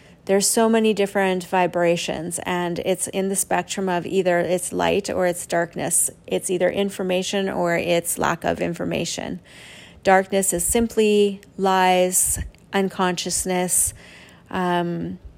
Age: 30-49